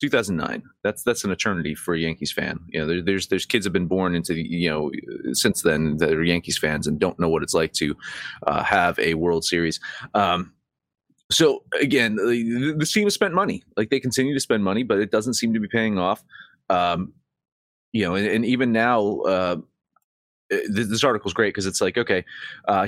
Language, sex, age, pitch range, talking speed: English, male, 30-49, 95-120 Hz, 210 wpm